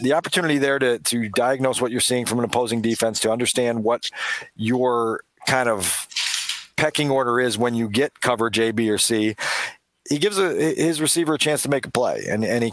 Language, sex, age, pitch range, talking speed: English, male, 40-59, 115-140 Hz, 210 wpm